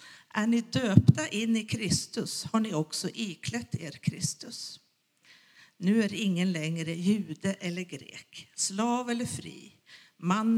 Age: 50-69